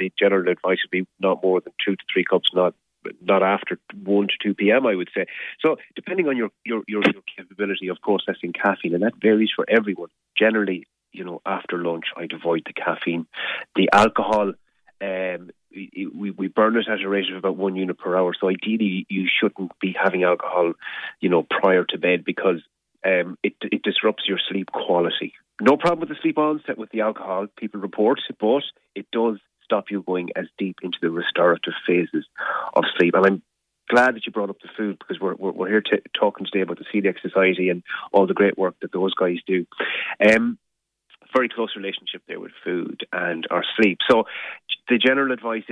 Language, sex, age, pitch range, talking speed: English, male, 30-49, 90-110 Hz, 200 wpm